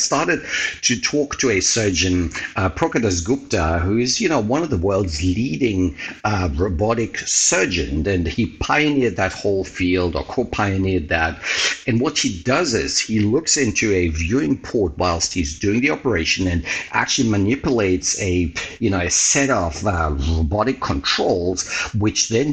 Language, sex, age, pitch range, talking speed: English, male, 50-69, 85-110 Hz, 160 wpm